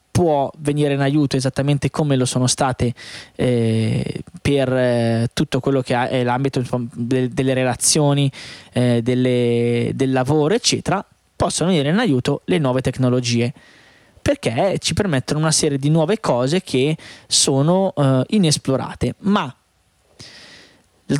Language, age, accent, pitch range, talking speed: Italian, 20-39, native, 125-150 Hz, 120 wpm